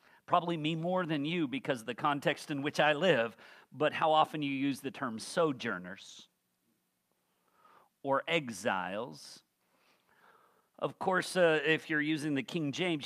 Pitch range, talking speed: 125-165 Hz, 145 wpm